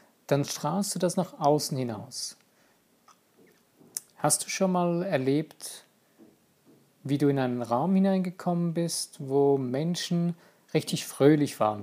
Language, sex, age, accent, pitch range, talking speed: German, male, 50-69, German, 155-205 Hz, 120 wpm